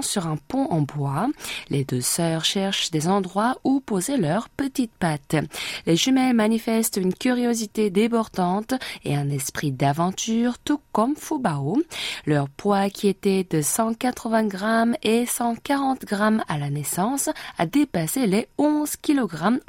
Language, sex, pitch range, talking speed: French, female, 155-245 Hz, 145 wpm